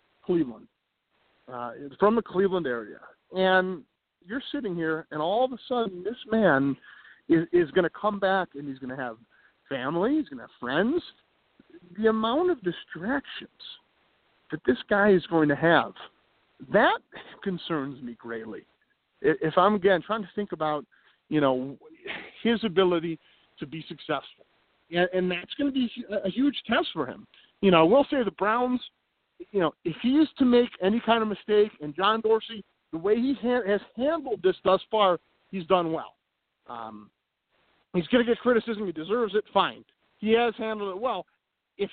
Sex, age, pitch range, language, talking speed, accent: male, 40-59, 165-230 Hz, English, 170 wpm, American